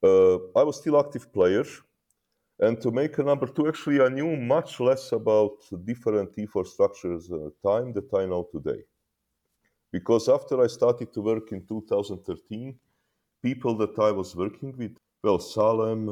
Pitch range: 95-125 Hz